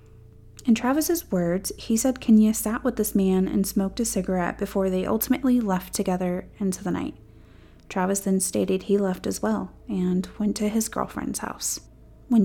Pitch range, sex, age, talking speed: 180-215 Hz, female, 20-39, 175 wpm